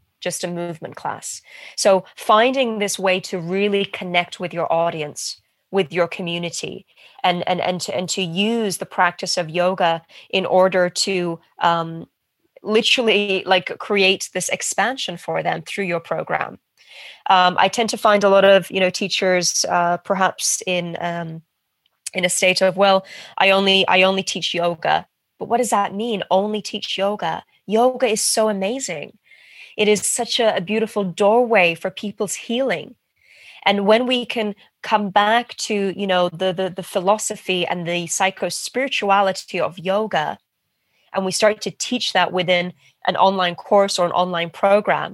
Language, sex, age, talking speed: English, female, 20-39, 160 wpm